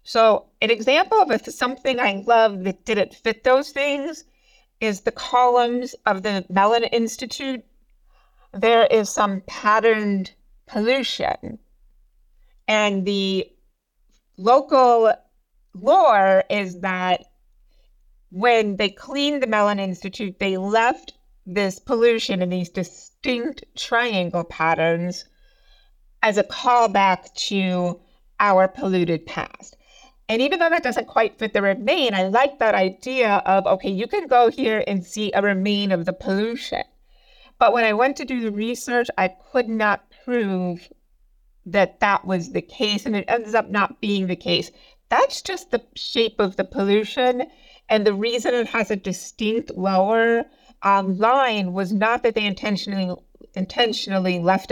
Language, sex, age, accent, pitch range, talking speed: English, female, 50-69, American, 195-255 Hz, 140 wpm